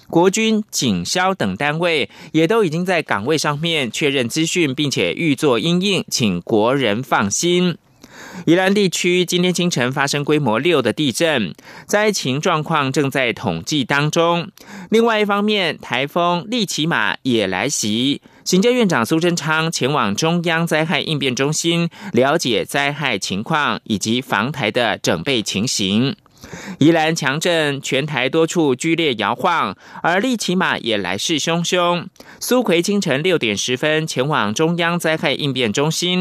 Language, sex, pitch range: German, male, 140-180 Hz